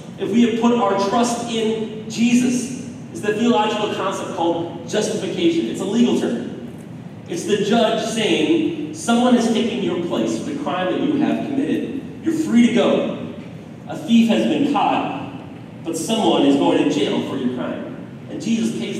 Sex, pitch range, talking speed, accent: male, 185-280 Hz, 175 wpm, American